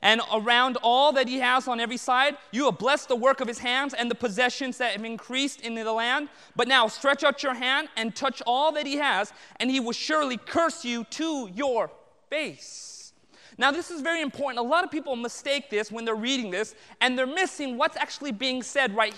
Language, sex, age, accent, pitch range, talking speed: English, male, 30-49, American, 240-320 Hz, 220 wpm